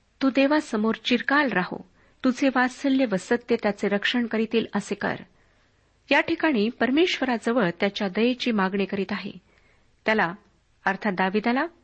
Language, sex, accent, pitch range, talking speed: Marathi, female, native, 200-250 Hz, 115 wpm